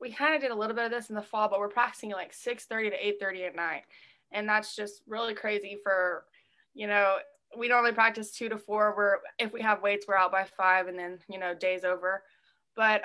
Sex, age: female, 20-39